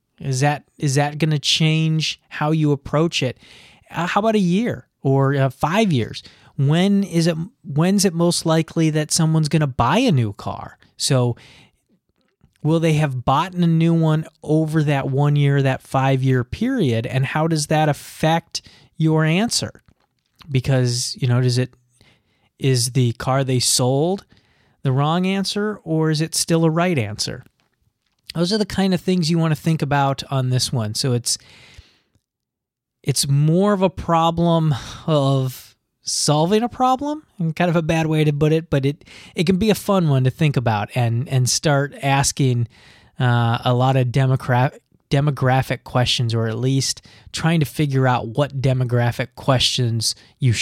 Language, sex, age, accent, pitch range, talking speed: English, male, 30-49, American, 125-165 Hz, 170 wpm